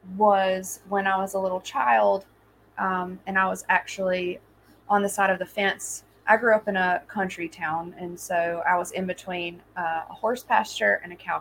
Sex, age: female, 20-39